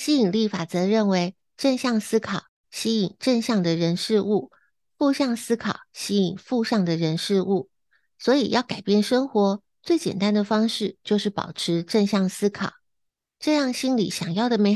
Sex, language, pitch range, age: female, Chinese, 185-235 Hz, 60-79